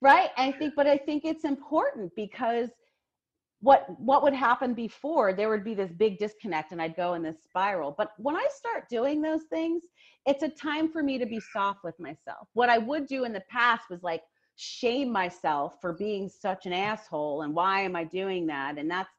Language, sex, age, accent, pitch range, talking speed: English, female, 30-49, American, 195-260 Hz, 210 wpm